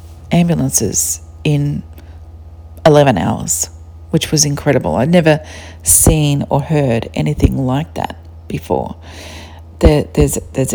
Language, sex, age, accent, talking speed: English, female, 40-59, Australian, 105 wpm